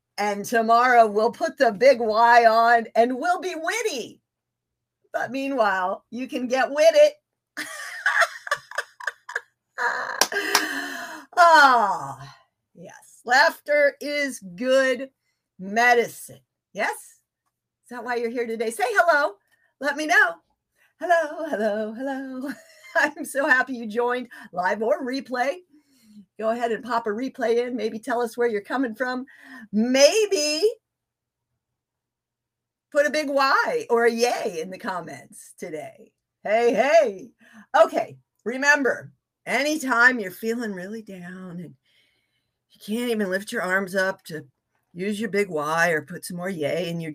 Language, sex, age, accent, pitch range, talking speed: English, female, 50-69, American, 205-285 Hz, 130 wpm